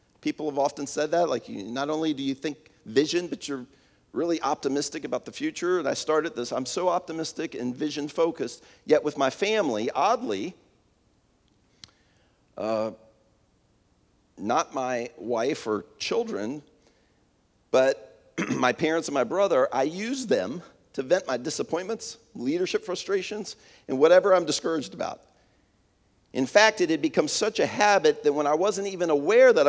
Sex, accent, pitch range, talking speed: male, American, 140-210 Hz, 150 wpm